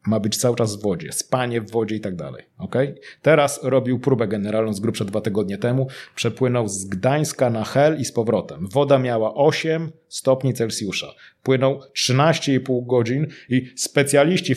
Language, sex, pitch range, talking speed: Polish, male, 110-130 Hz, 160 wpm